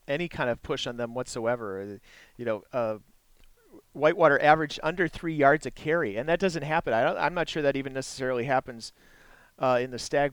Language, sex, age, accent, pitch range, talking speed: English, male, 40-59, American, 115-160 Hz, 200 wpm